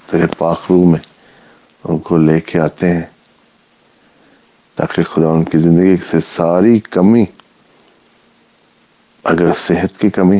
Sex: male